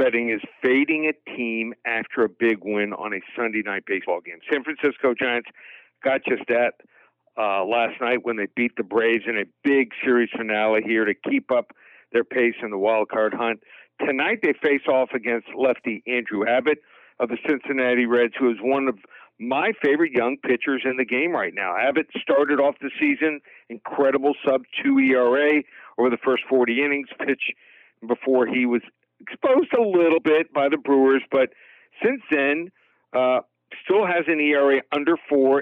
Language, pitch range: English, 120-140 Hz